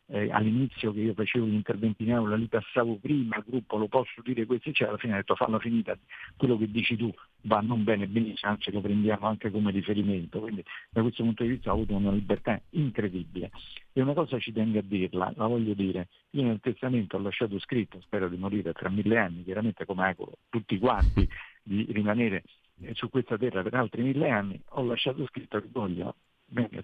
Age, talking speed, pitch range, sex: 50-69, 210 wpm, 105-130 Hz, male